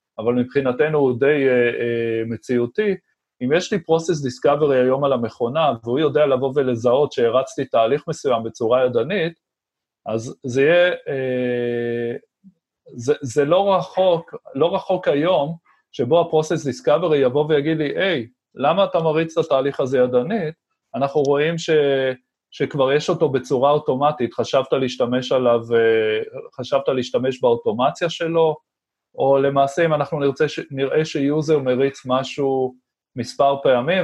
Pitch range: 125-160 Hz